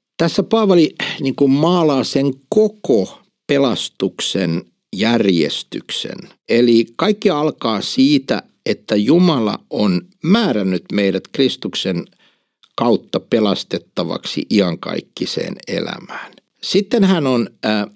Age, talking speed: 60-79, 85 wpm